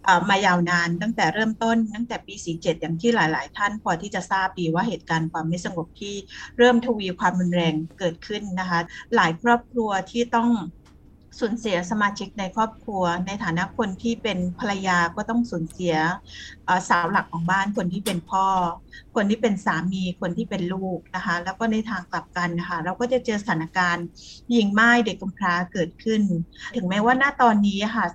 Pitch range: 180-230 Hz